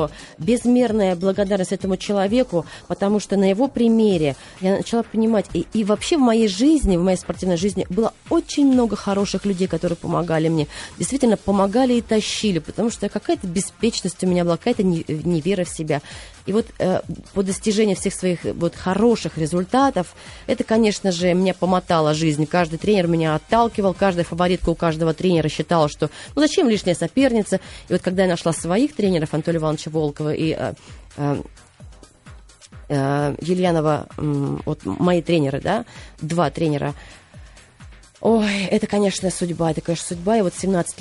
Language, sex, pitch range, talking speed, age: Russian, female, 165-210 Hz, 155 wpm, 20-39